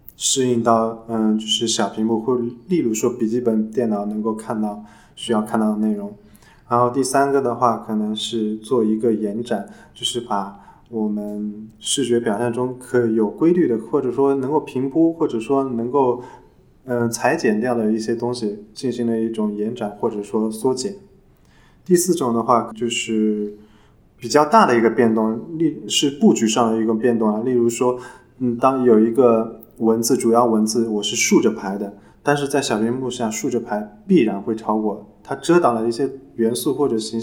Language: Chinese